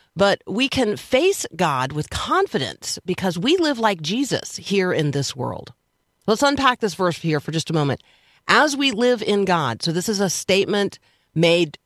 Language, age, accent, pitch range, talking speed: English, 40-59, American, 160-200 Hz, 180 wpm